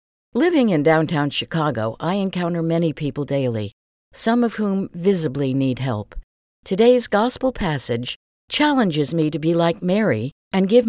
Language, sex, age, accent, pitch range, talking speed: English, female, 60-79, American, 140-210 Hz, 145 wpm